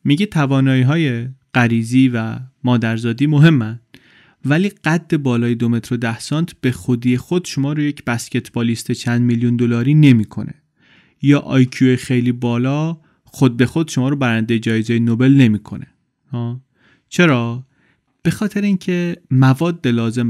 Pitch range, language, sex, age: 115-145 Hz, Persian, male, 30-49